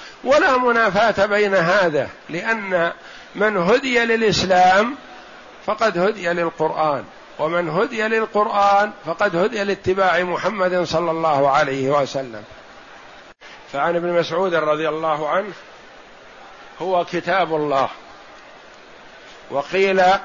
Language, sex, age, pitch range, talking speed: Arabic, male, 60-79, 170-205 Hz, 95 wpm